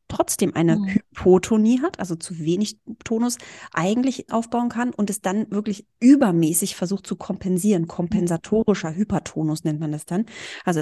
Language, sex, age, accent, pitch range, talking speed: German, female, 20-39, German, 175-220 Hz, 145 wpm